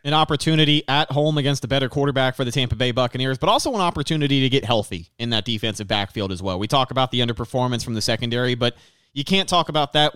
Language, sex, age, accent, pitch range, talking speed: English, male, 30-49, American, 120-150 Hz, 235 wpm